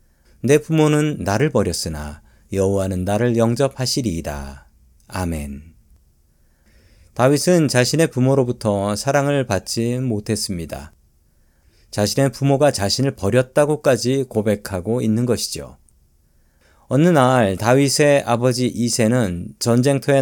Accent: native